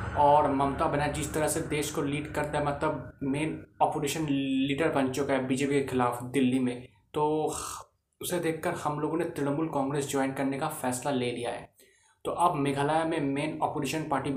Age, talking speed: 20-39, 190 wpm